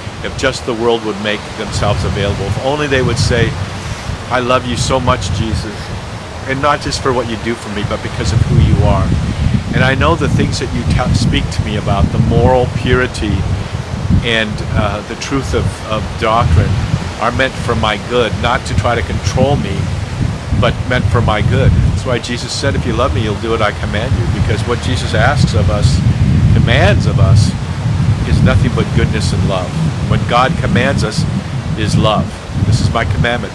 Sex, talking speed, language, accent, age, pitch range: male, 195 wpm, English, American, 50-69, 105-120 Hz